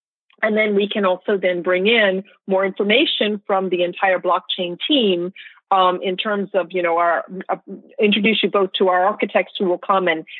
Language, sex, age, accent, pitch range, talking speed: English, female, 40-59, American, 180-240 Hz, 190 wpm